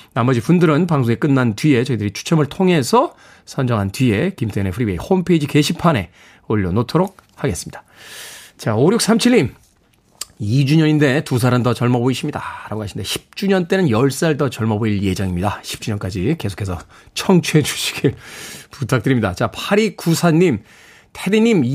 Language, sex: Korean, male